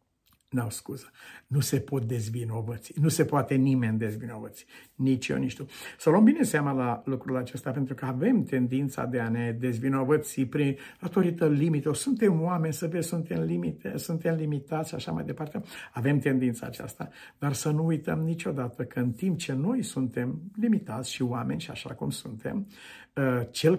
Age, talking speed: 60-79, 170 wpm